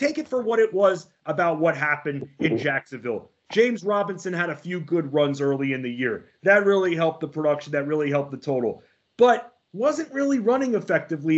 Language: English